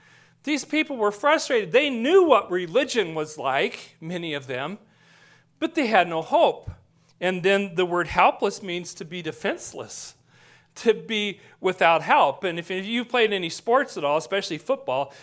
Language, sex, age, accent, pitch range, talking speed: English, male, 40-59, American, 155-230 Hz, 160 wpm